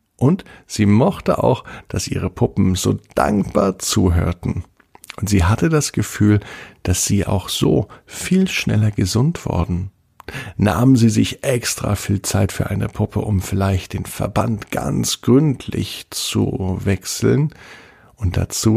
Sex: male